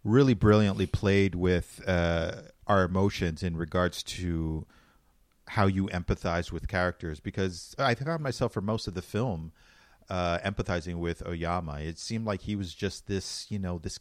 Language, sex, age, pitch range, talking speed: English, male, 40-59, 85-105 Hz, 165 wpm